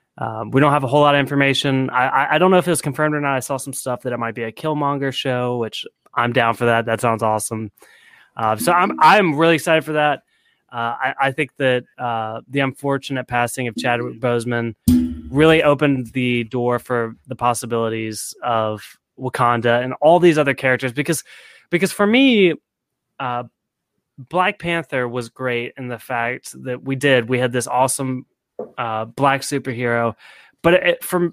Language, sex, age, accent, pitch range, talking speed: English, male, 20-39, American, 120-145 Hz, 185 wpm